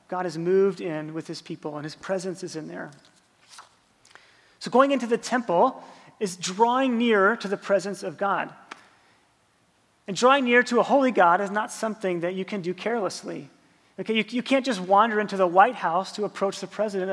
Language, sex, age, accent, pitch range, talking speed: English, male, 30-49, American, 180-215 Hz, 195 wpm